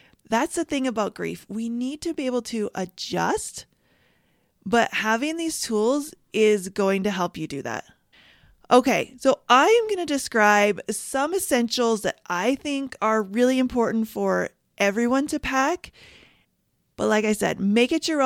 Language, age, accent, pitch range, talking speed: English, 30-49, American, 200-250 Hz, 160 wpm